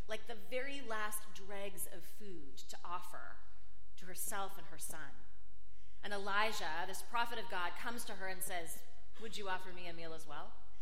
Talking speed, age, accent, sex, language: 185 wpm, 30-49, American, female, English